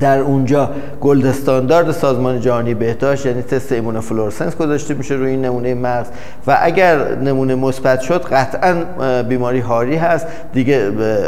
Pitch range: 125-165 Hz